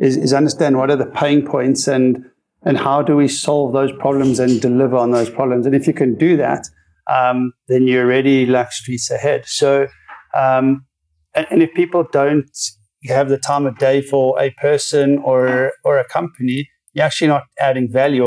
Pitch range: 125-140 Hz